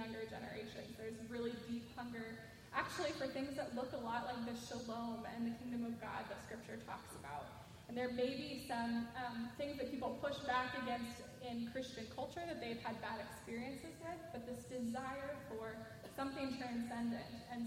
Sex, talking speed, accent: female, 180 wpm, American